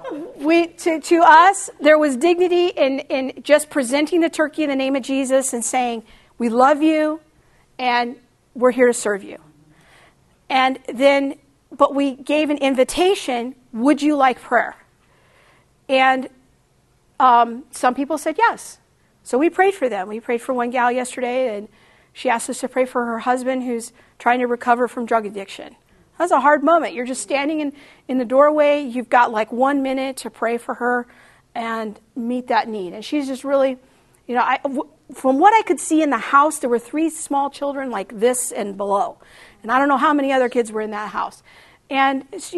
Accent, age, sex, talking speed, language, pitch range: American, 50-69, female, 190 wpm, English, 245-310 Hz